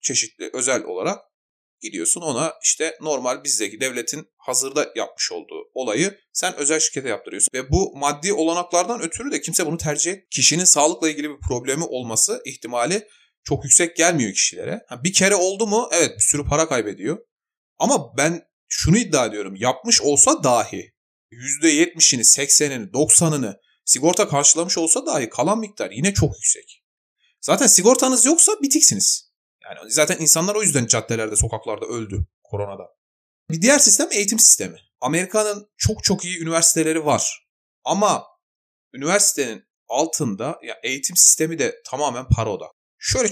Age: 30-49